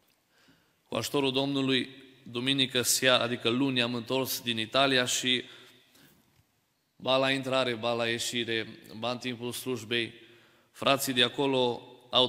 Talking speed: 125 wpm